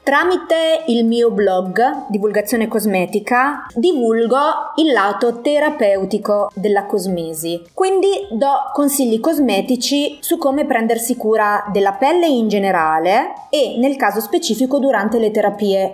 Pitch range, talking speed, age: 205-265 Hz, 115 wpm, 30-49